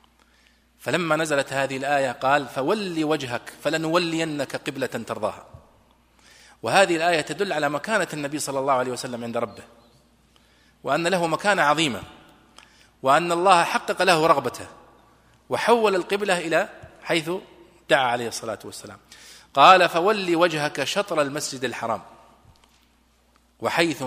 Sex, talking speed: male, 115 wpm